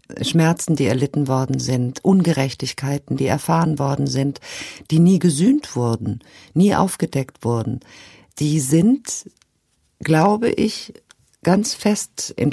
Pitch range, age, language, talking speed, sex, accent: 125-165 Hz, 50-69, German, 115 wpm, female, German